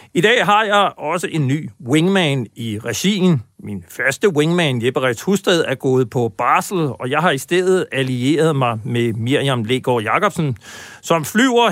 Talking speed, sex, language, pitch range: 165 wpm, male, Danish, 120-170 Hz